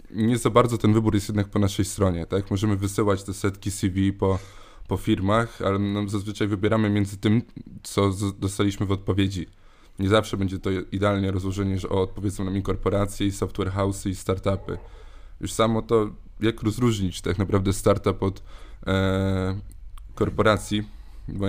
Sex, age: male, 20-39